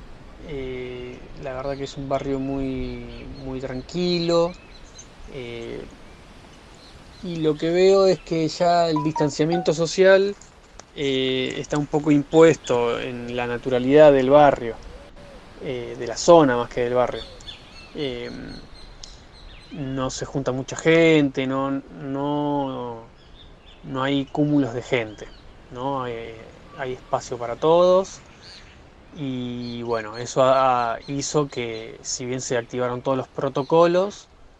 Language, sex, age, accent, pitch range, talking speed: Spanish, male, 20-39, Argentinian, 120-160 Hz, 120 wpm